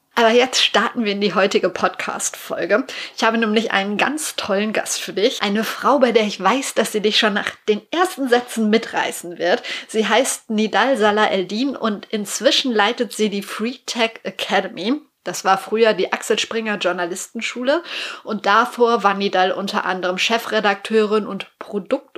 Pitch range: 200-240 Hz